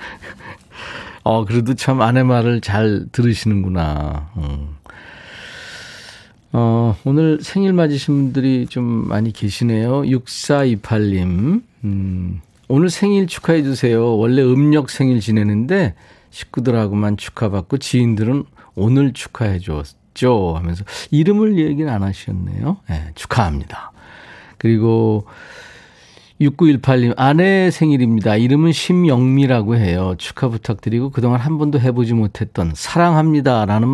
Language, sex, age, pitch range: Korean, male, 40-59, 105-145 Hz